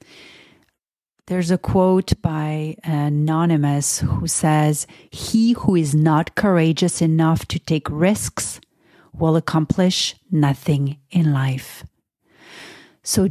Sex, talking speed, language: female, 100 wpm, English